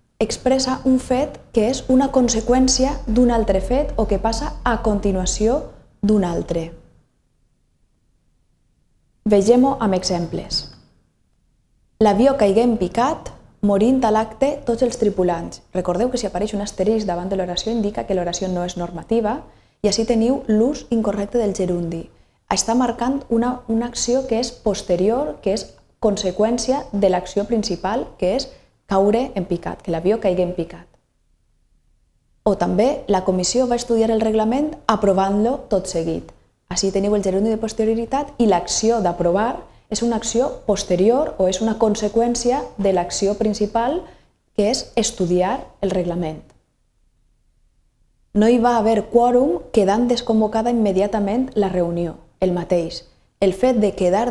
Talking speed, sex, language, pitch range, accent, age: 140 wpm, female, Spanish, 190-240 Hz, Spanish, 20-39